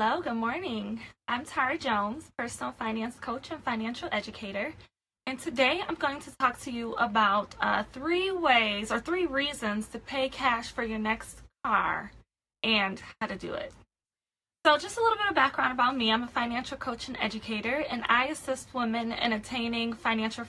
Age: 20-39